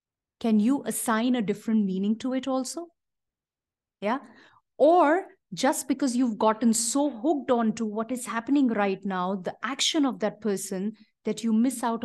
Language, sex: English, female